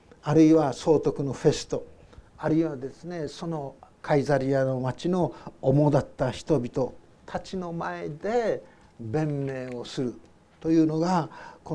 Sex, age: male, 60-79